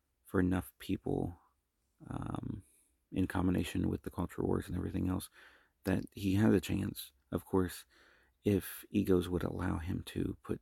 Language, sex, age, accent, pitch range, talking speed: English, male, 30-49, American, 80-95 Hz, 145 wpm